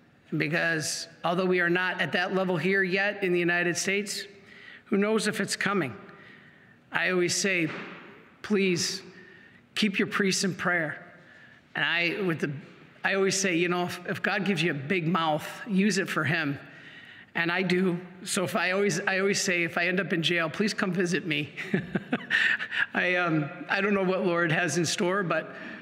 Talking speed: 185 wpm